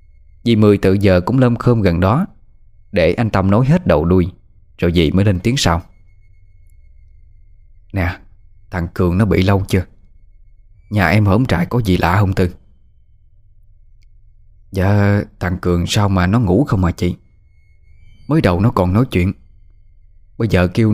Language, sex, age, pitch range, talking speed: Vietnamese, male, 20-39, 90-115 Hz, 165 wpm